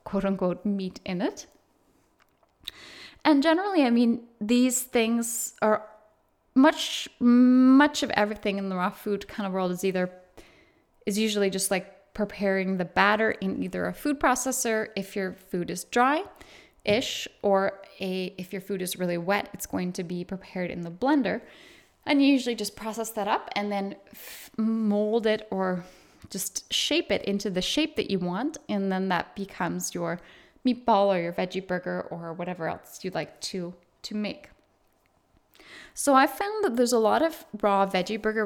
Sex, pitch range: female, 190-250 Hz